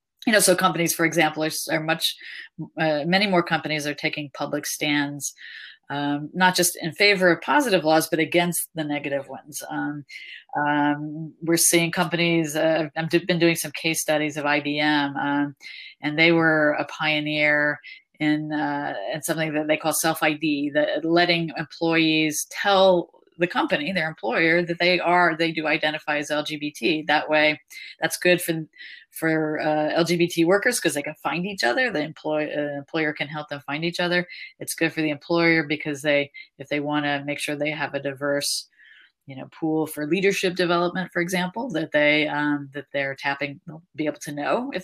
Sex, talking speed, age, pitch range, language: female, 180 wpm, 30-49, 150-175 Hz, English